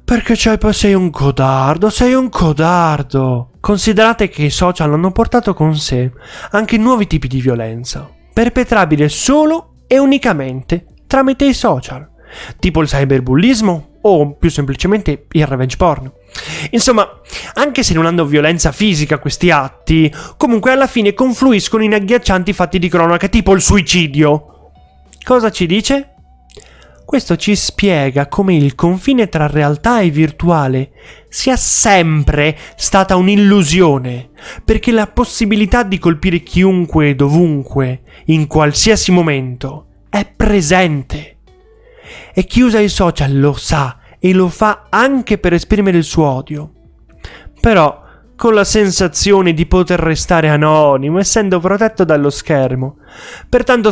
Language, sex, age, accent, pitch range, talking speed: Italian, male, 30-49, native, 150-210 Hz, 130 wpm